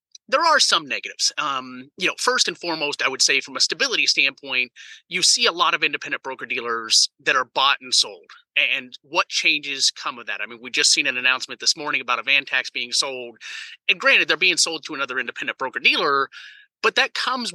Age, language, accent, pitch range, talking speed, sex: 30-49, English, American, 140-175 Hz, 220 wpm, male